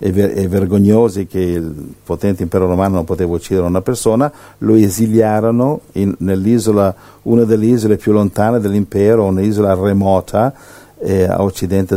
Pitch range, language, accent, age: 95-115 Hz, Italian, native, 60-79